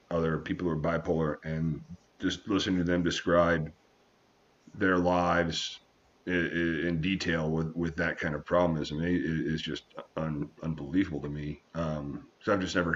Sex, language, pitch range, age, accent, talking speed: male, English, 75-90 Hz, 40-59, American, 155 wpm